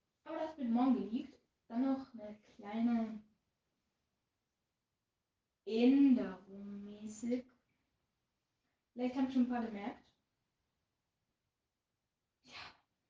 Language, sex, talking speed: German, female, 80 wpm